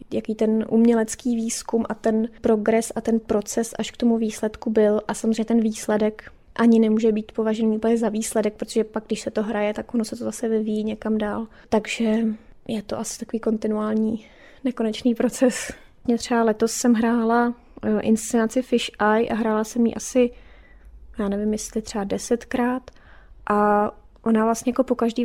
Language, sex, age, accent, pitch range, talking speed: Czech, female, 20-39, native, 220-235 Hz, 170 wpm